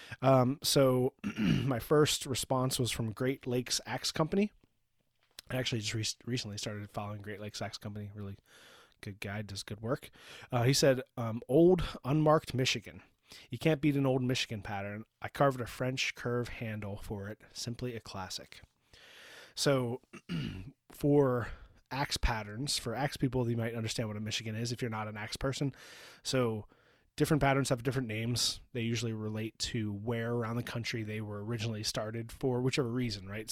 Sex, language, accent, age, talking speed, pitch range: male, English, American, 20-39, 170 wpm, 110-130 Hz